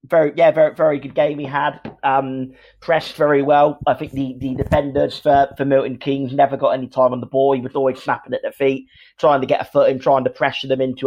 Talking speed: 250 wpm